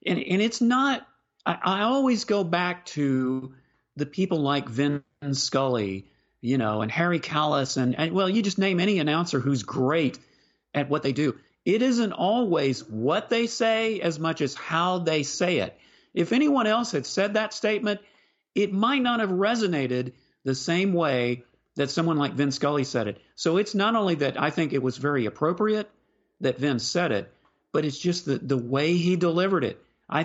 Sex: male